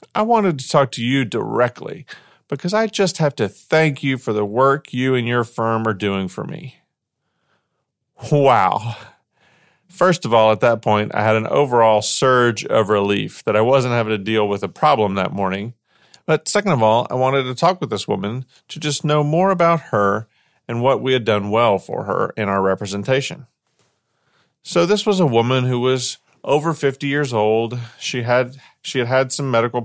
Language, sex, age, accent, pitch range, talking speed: English, male, 40-59, American, 110-145 Hz, 195 wpm